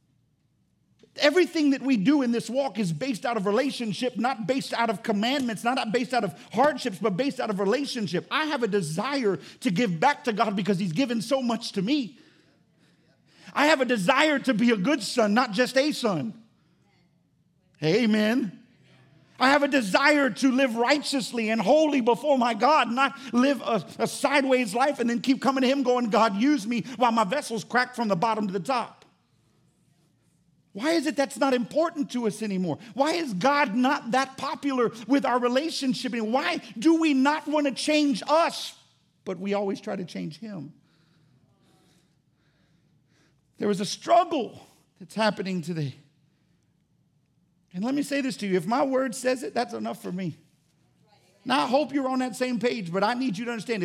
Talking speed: 185 wpm